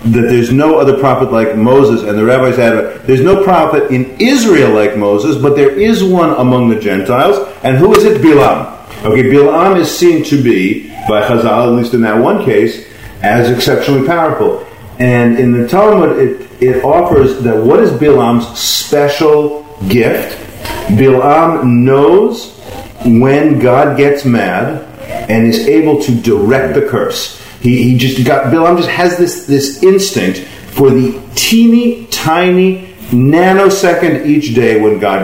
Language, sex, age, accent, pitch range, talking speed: English, male, 40-59, American, 115-155 Hz, 155 wpm